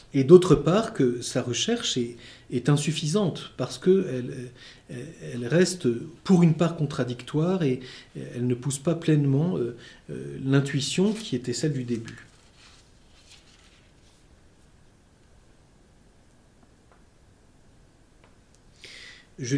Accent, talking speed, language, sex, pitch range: French, 90 wpm, French, male, 125-165 Hz